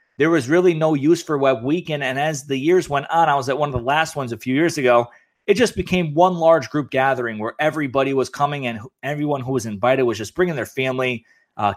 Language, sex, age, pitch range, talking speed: English, male, 30-49, 125-150 Hz, 245 wpm